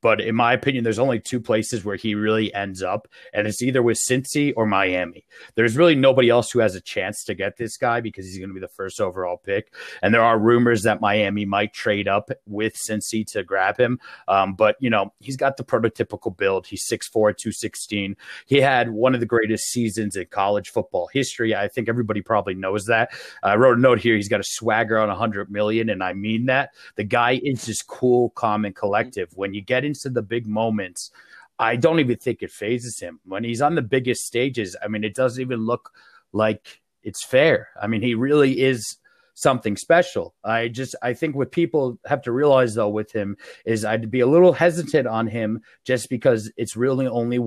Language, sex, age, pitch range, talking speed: English, male, 30-49, 105-125 Hz, 215 wpm